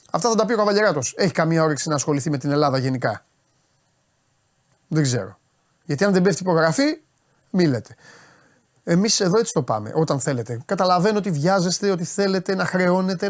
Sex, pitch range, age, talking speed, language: male, 155-230 Hz, 30-49, 170 wpm, Greek